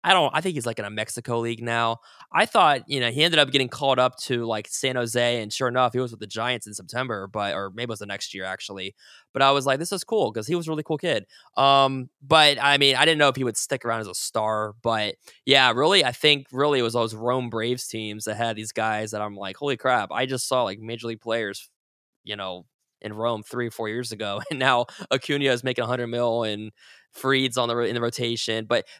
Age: 20-39